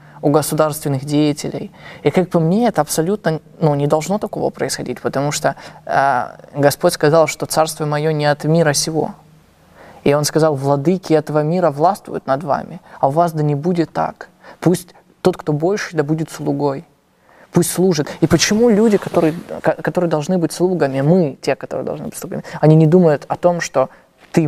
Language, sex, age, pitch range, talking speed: Russian, male, 20-39, 145-175 Hz, 180 wpm